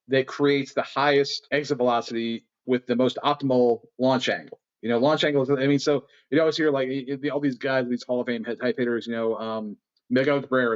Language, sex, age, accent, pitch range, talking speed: English, male, 40-59, American, 120-145 Hz, 210 wpm